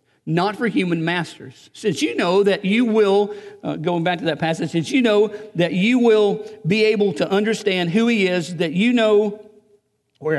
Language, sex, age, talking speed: English, male, 50-69, 190 wpm